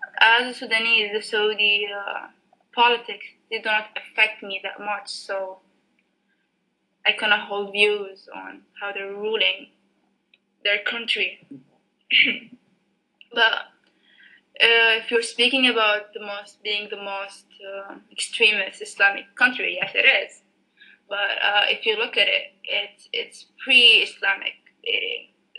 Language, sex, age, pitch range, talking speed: English, female, 20-39, 195-235 Hz, 125 wpm